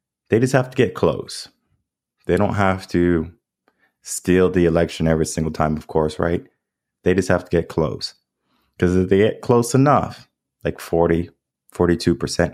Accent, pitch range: American, 80-95 Hz